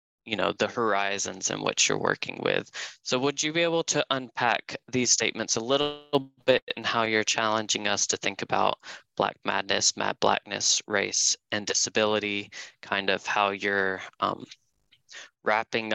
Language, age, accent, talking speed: English, 20-39, American, 160 wpm